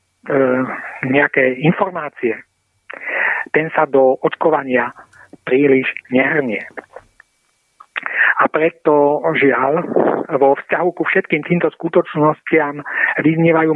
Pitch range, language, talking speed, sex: 140-165 Hz, Slovak, 80 wpm, male